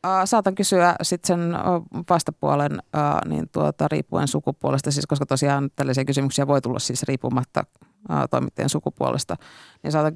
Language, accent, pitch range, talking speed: Finnish, native, 140-180 Hz, 130 wpm